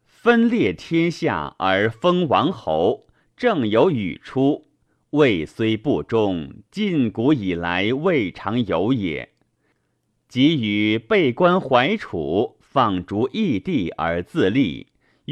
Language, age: Chinese, 50-69